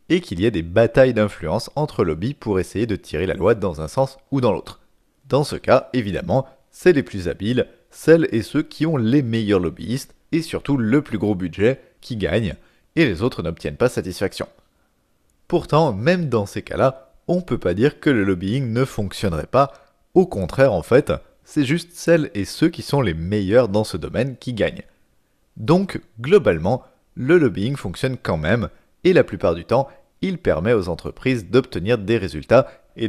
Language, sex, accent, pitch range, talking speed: French, male, French, 100-145 Hz, 190 wpm